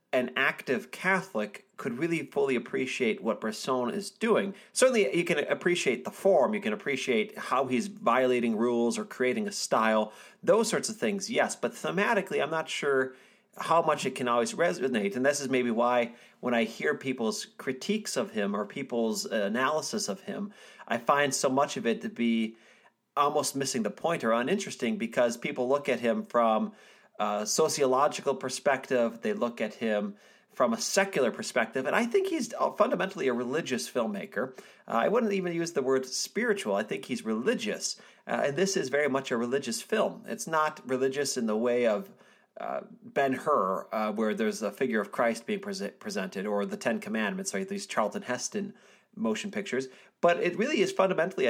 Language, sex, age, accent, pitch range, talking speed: English, male, 40-59, American, 120-200 Hz, 180 wpm